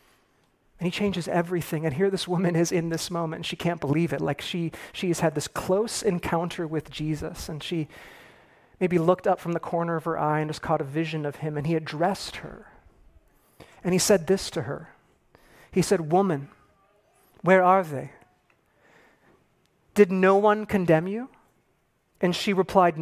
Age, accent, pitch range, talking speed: 40-59, American, 155-185 Hz, 175 wpm